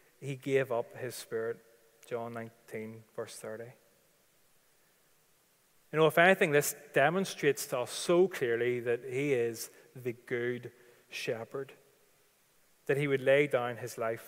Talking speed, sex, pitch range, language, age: 135 wpm, male, 120-150 Hz, English, 30-49